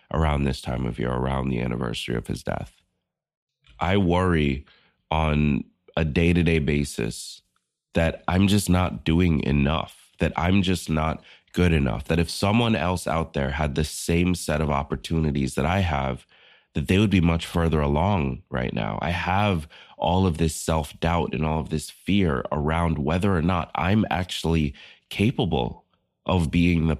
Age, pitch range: 20-39, 75-90 Hz